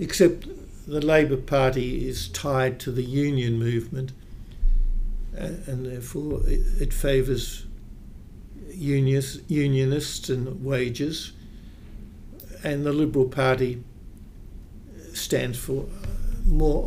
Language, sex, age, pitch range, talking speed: English, male, 60-79, 110-145 Hz, 95 wpm